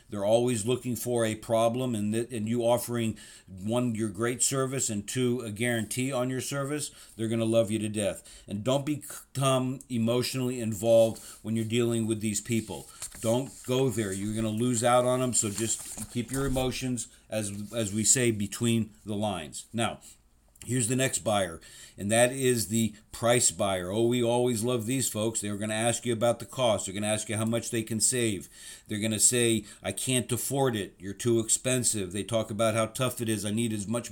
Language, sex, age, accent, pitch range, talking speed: English, male, 50-69, American, 110-125 Hz, 210 wpm